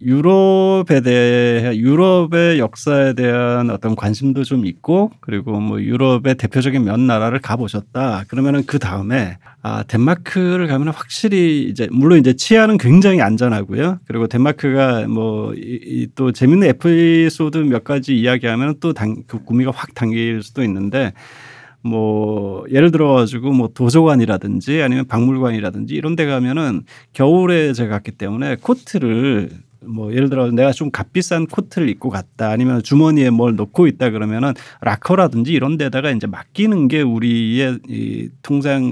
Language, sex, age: Korean, male, 30-49